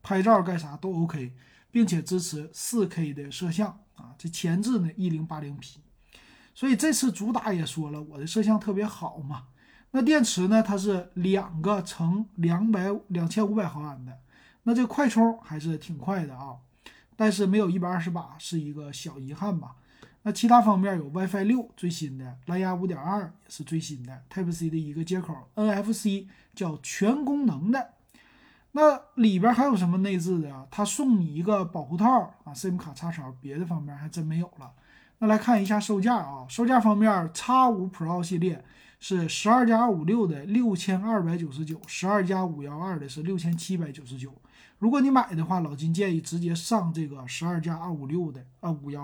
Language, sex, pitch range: Chinese, male, 155-210 Hz